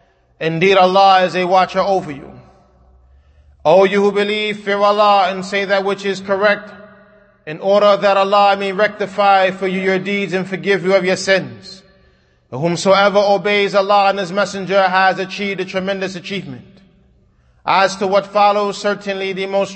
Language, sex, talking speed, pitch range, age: English, male, 165 wpm, 185-205 Hz, 30-49